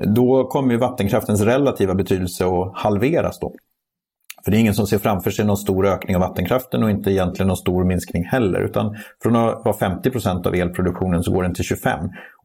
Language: Swedish